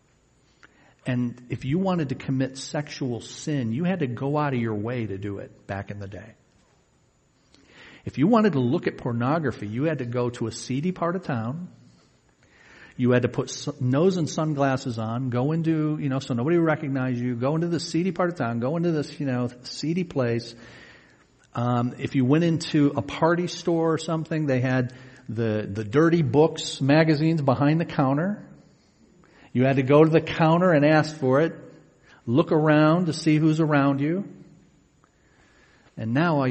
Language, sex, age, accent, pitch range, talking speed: English, male, 50-69, American, 115-155 Hz, 185 wpm